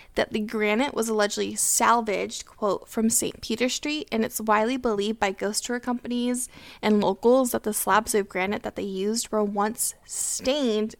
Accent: American